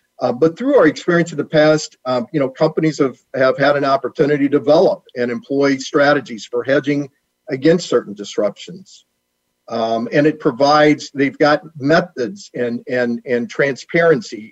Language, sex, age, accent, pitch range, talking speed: English, male, 50-69, American, 120-150 Hz, 155 wpm